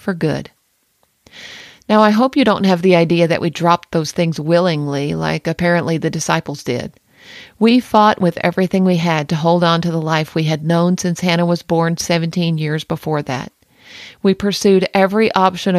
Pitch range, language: 165-195 Hz, English